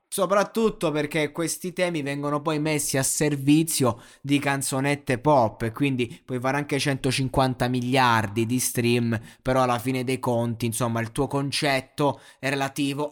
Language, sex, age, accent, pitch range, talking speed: Italian, male, 20-39, native, 115-140 Hz, 145 wpm